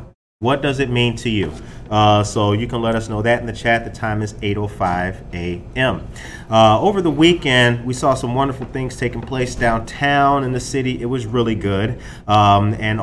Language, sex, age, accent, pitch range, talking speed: English, male, 30-49, American, 110-135 Hz, 195 wpm